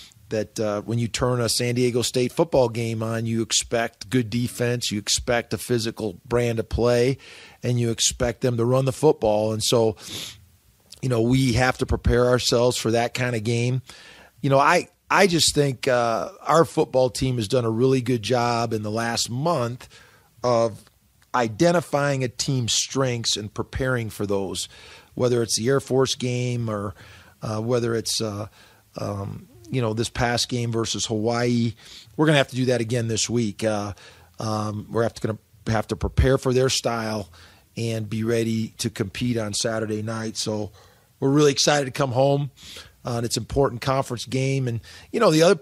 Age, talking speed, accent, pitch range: 40-59, 185 wpm, American, 110-130 Hz